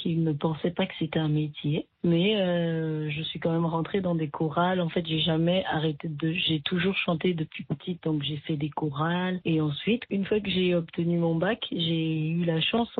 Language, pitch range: French, 165-200 Hz